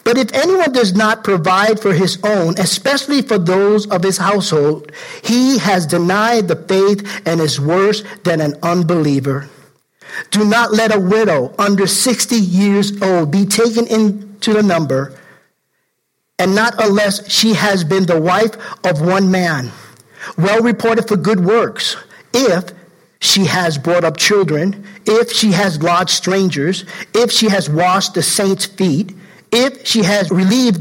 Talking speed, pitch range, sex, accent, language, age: 150 wpm, 180-220 Hz, male, American, English, 50-69